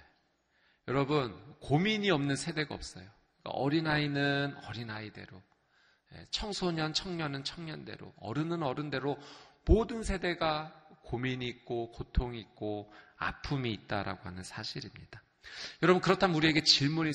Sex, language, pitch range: male, Korean, 110-155 Hz